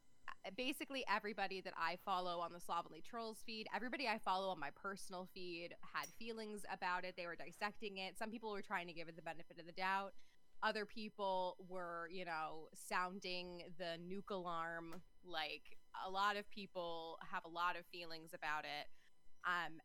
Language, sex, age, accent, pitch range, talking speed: English, female, 20-39, American, 175-215 Hz, 180 wpm